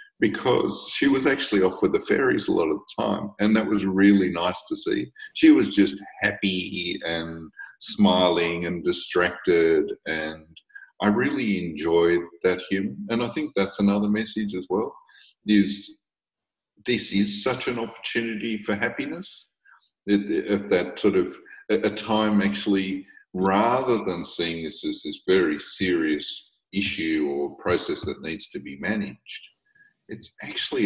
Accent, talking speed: Australian, 145 wpm